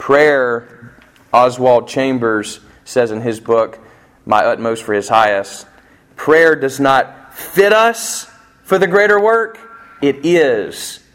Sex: male